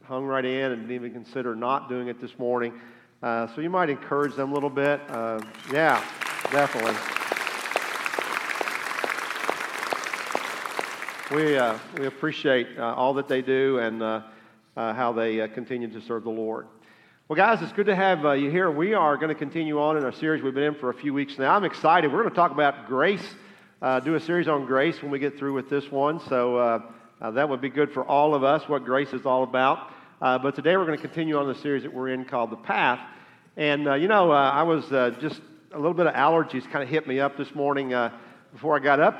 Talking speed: 230 wpm